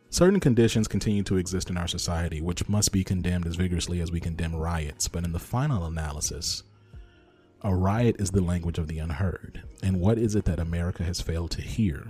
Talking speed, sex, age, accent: 205 wpm, male, 30-49, American